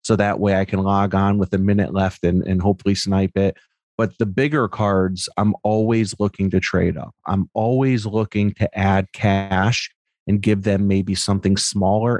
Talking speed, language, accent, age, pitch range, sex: 185 wpm, English, American, 30-49, 95-105 Hz, male